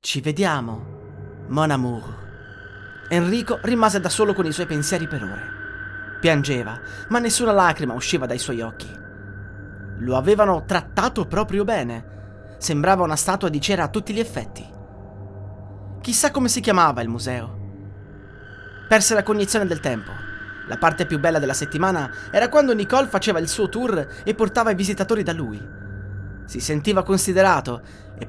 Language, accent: Italian, native